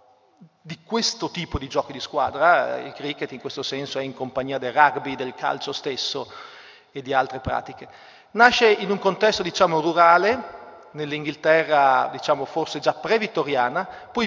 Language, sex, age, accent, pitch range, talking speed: Italian, male, 40-59, native, 140-200 Hz, 150 wpm